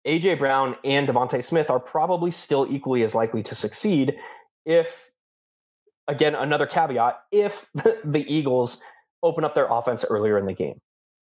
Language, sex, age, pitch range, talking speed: English, male, 20-39, 120-180 Hz, 150 wpm